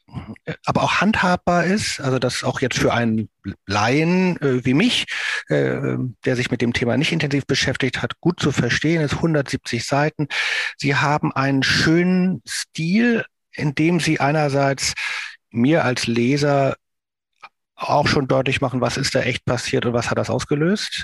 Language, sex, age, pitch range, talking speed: German, male, 50-69, 125-150 Hz, 160 wpm